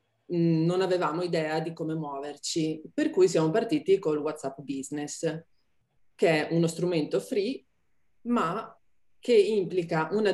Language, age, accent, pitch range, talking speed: Italian, 30-49, native, 150-185 Hz, 130 wpm